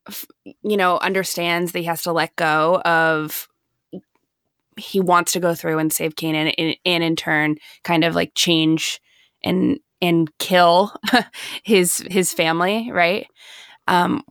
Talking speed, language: 140 wpm, English